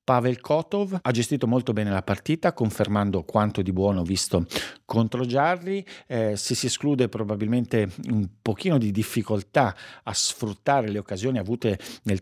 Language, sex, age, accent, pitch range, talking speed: Italian, male, 50-69, native, 105-130 Hz, 145 wpm